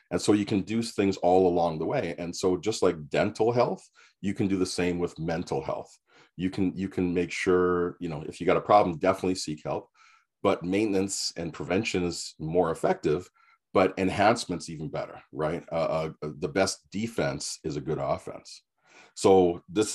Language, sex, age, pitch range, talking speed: English, male, 40-59, 85-100 Hz, 190 wpm